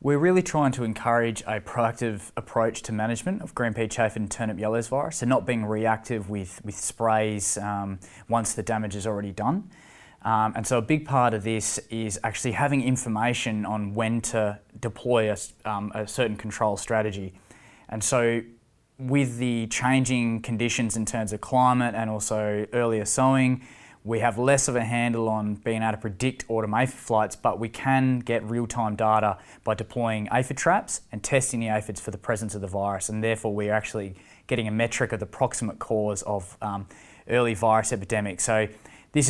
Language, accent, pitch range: English, Australian, 110-120 Hz